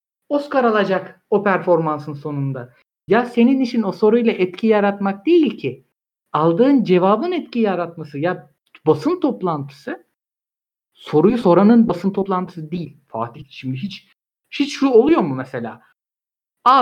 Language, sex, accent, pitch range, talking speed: Turkish, male, native, 170-245 Hz, 125 wpm